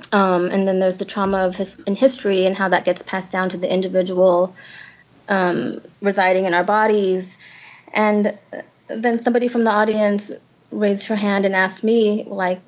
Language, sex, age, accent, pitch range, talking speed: English, female, 20-39, American, 190-225 Hz, 175 wpm